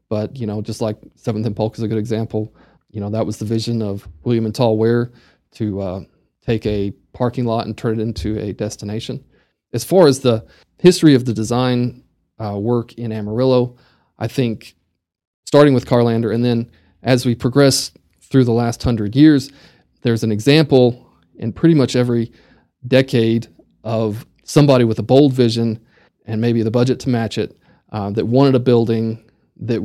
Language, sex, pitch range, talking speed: English, male, 110-125 Hz, 180 wpm